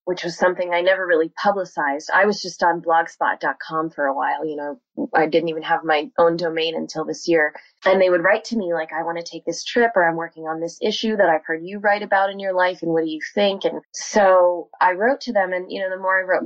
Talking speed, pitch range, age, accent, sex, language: 265 wpm, 160-195 Hz, 20-39, American, female, English